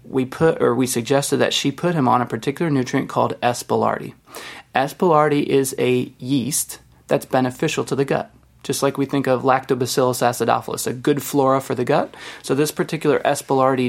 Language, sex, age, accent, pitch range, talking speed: English, male, 20-39, American, 125-145 Hz, 180 wpm